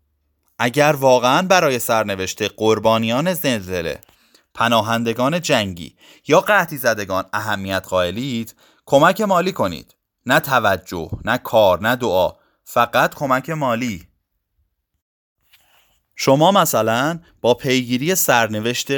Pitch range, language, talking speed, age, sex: 100-140 Hz, Persian, 95 wpm, 30-49, male